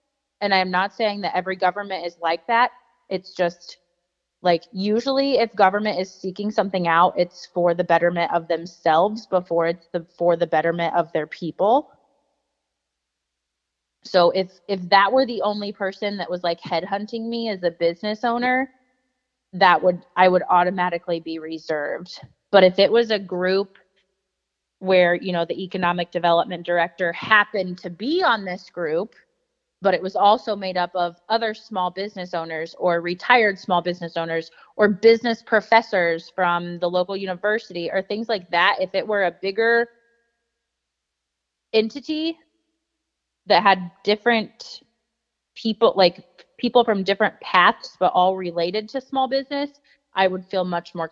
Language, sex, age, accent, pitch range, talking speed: English, female, 20-39, American, 175-220 Hz, 155 wpm